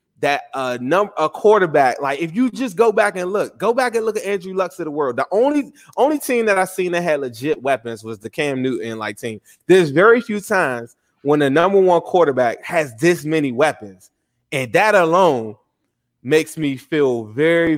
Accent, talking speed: American, 200 wpm